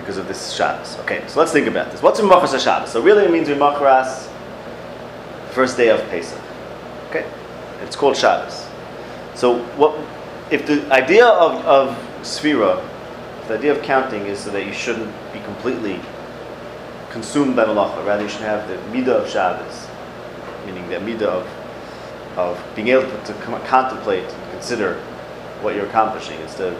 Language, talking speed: English, 170 wpm